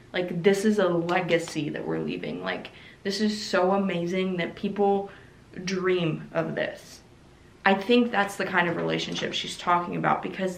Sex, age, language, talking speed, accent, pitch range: female, 20-39, English, 165 wpm, American, 175-215 Hz